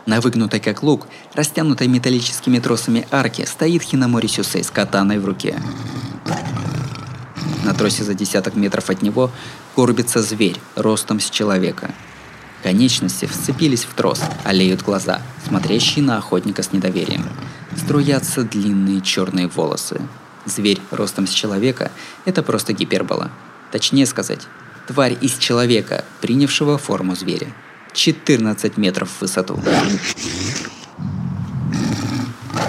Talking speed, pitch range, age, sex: 115 wpm, 100-140 Hz, 20-39, male